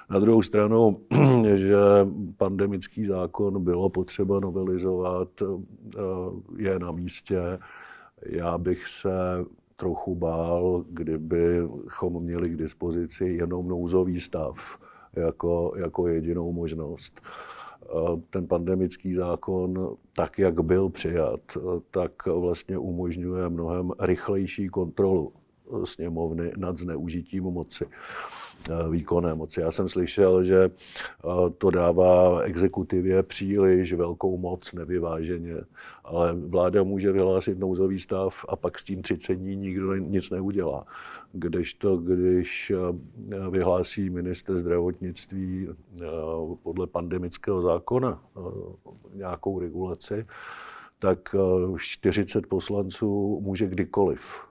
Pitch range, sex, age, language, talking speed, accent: 85-95 Hz, male, 50-69, Czech, 95 wpm, native